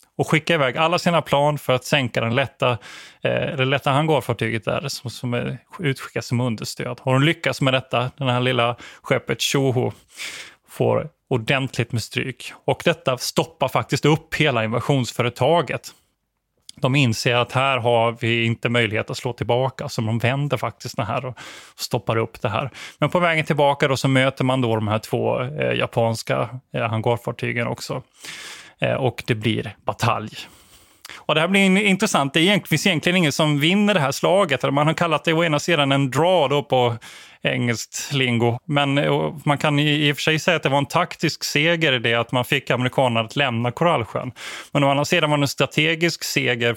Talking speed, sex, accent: 185 wpm, male, native